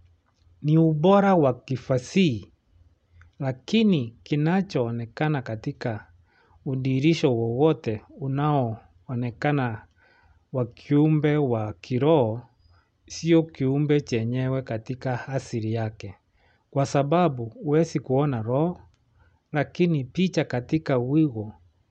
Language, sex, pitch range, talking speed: English, male, 110-150 Hz, 80 wpm